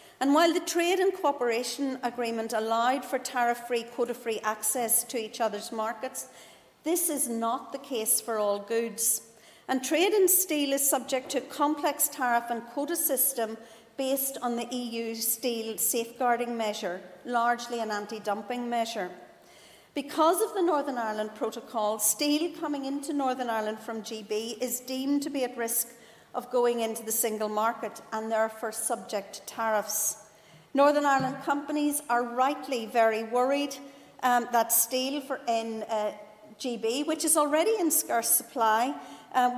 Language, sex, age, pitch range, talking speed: English, female, 50-69, 225-275 Hz, 150 wpm